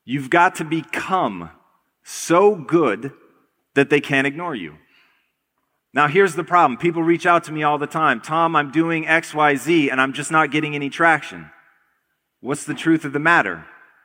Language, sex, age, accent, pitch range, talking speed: English, male, 30-49, American, 150-185 Hz, 170 wpm